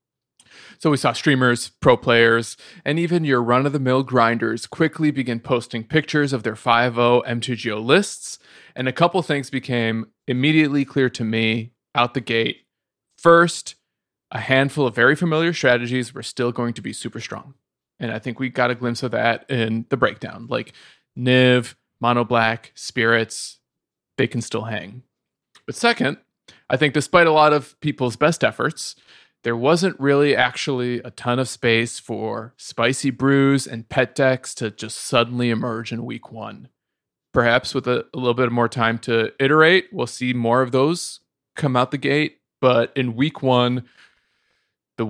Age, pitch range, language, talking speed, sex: 20-39, 115-140 Hz, English, 160 wpm, male